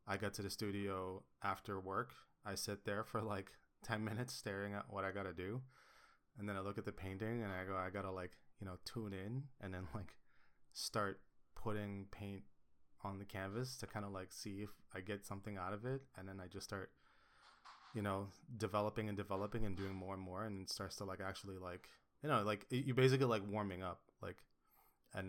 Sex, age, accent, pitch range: male, 20-39, American, 95-110 Hz